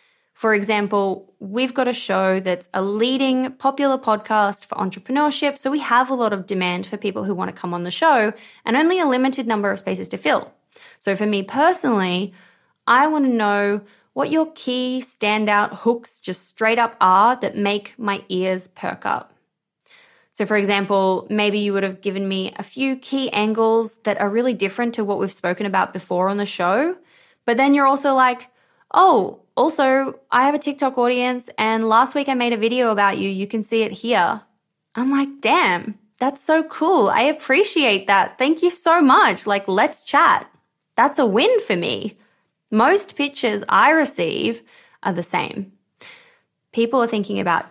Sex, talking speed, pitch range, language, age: female, 180 wpm, 200-265 Hz, English, 20-39